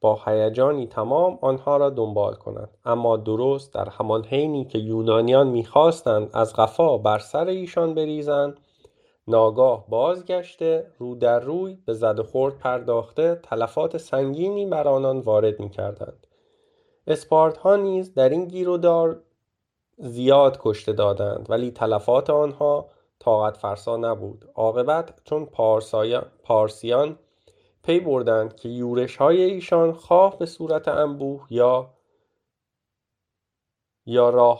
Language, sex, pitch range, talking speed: Persian, male, 115-160 Hz, 120 wpm